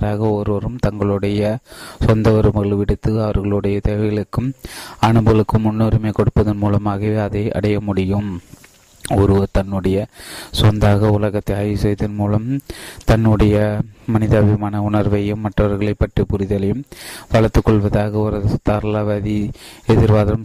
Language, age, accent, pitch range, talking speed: Tamil, 30-49, native, 105-110 Hz, 90 wpm